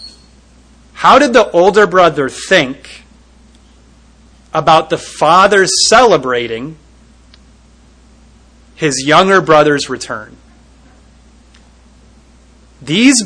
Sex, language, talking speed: male, English, 70 wpm